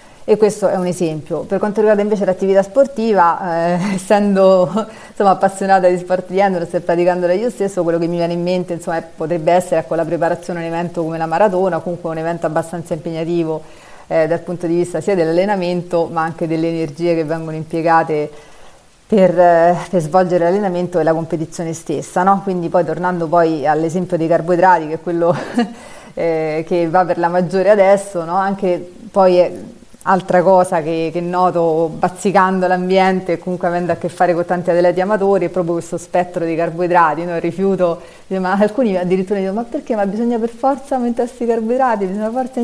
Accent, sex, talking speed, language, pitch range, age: native, female, 190 wpm, Italian, 170-195 Hz, 30-49